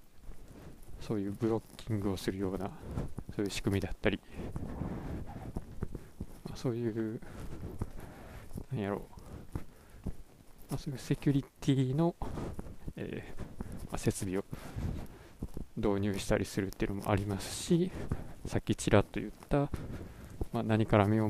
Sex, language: male, Japanese